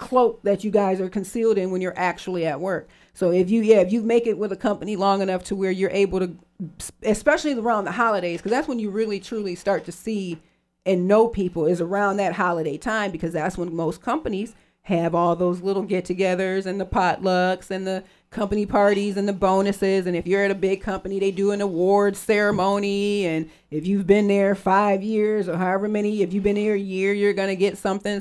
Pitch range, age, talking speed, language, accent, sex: 185-210 Hz, 40-59, 220 wpm, English, American, female